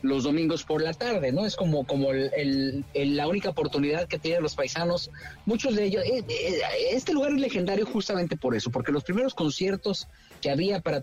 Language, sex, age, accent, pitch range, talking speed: Spanish, male, 40-59, Mexican, 135-175 Hz, 195 wpm